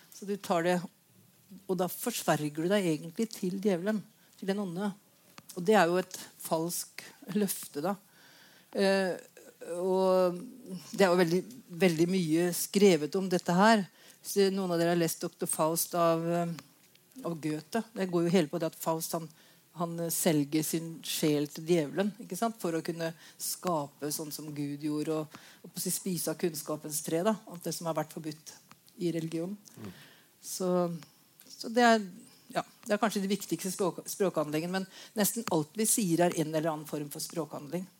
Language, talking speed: English, 180 wpm